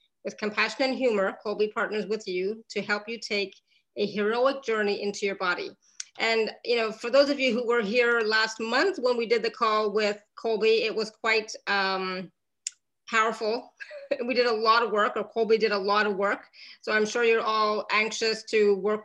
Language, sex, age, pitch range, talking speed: English, female, 30-49, 205-240 Hz, 200 wpm